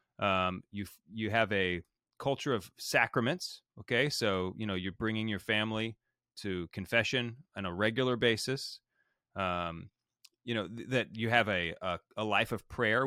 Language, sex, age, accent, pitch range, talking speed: English, male, 30-49, American, 100-125 Hz, 155 wpm